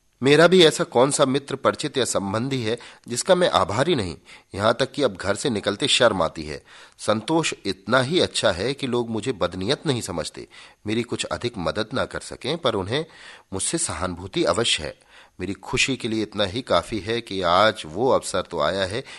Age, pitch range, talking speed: 40-59, 95-130 Hz, 195 wpm